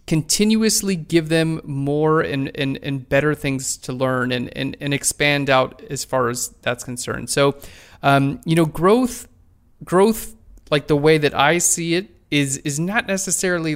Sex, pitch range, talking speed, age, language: male, 130-165 Hz, 165 wpm, 30-49, English